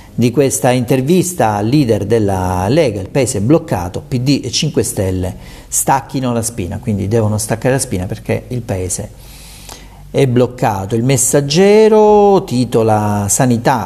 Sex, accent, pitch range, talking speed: male, native, 100-135 Hz, 140 wpm